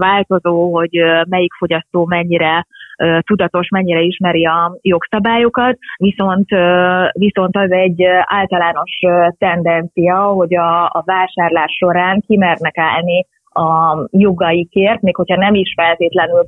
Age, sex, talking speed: 30-49, female, 105 wpm